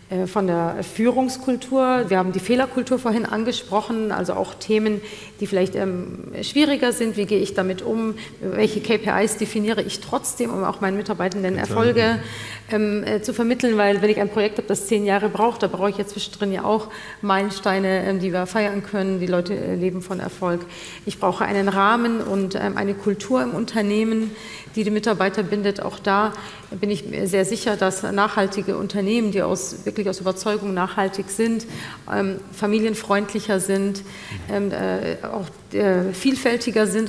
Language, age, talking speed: German, 40-59, 170 wpm